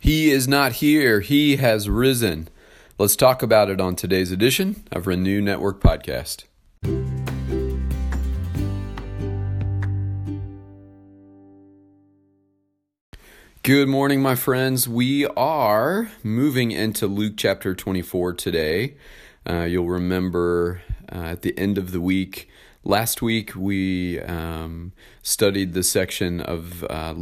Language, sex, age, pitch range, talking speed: English, male, 40-59, 85-100 Hz, 110 wpm